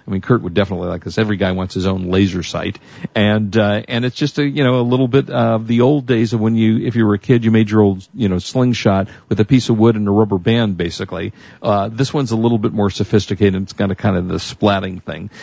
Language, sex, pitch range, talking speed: English, male, 100-120 Hz, 270 wpm